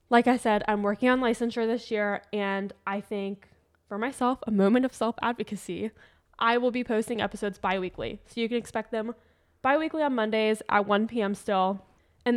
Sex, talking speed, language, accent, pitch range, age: female, 180 wpm, English, American, 195-235 Hz, 10-29